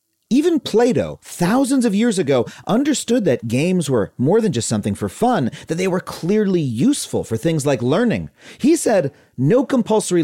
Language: English